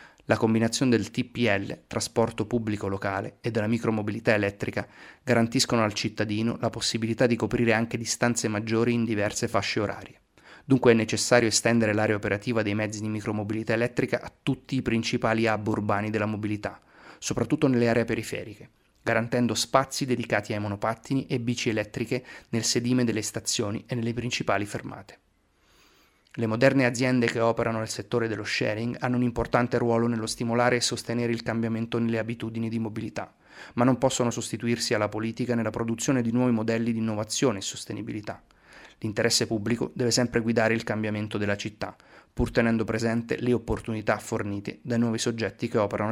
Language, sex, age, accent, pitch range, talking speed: Italian, male, 30-49, native, 110-120 Hz, 160 wpm